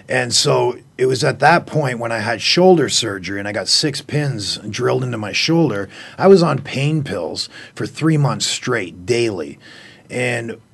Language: English